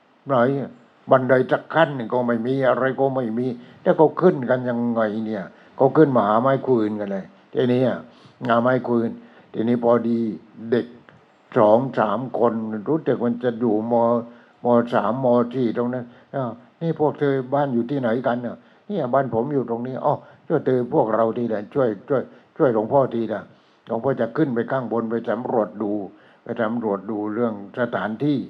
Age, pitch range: 60-79, 115-135 Hz